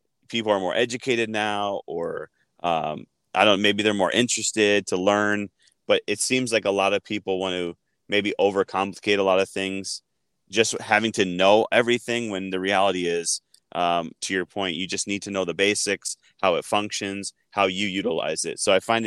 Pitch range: 95-105 Hz